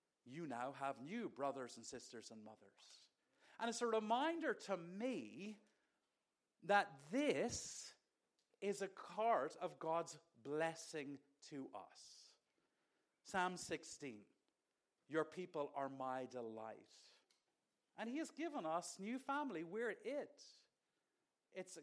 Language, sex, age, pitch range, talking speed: English, male, 50-69, 150-215 Hz, 115 wpm